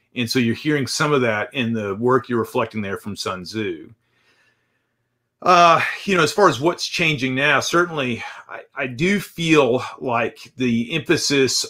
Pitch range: 115-140 Hz